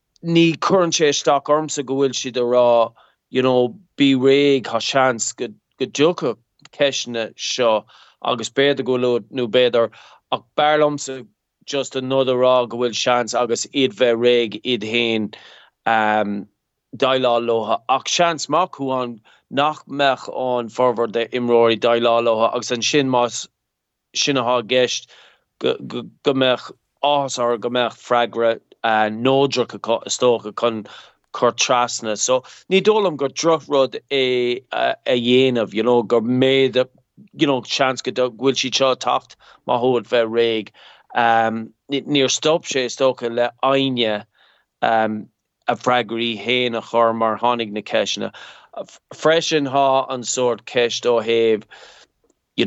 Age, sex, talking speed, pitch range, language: 30-49, male, 130 wpm, 115-135 Hz, English